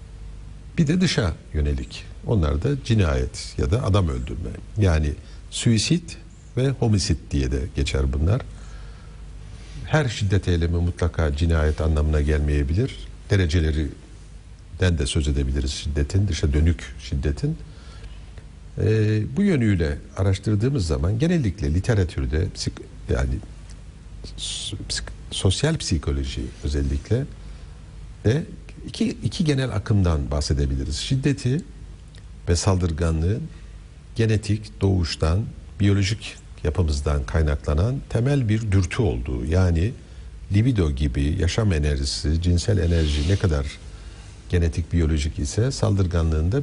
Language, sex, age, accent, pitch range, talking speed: Turkish, male, 60-79, native, 75-105 Hz, 95 wpm